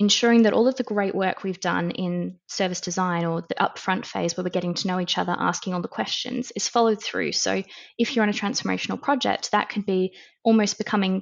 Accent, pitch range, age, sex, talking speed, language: Australian, 185-215 Hz, 20-39, female, 225 wpm, English